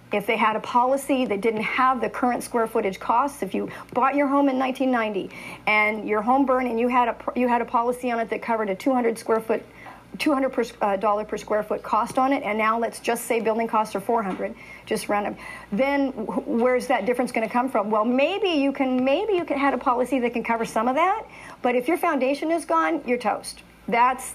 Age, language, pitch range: 50-69, English, 210-255 Hz